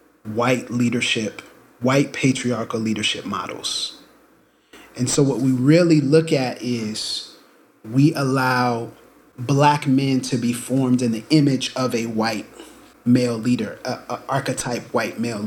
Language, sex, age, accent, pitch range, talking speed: English, male, 30-49, American, 115-140 Hz, 125 wpm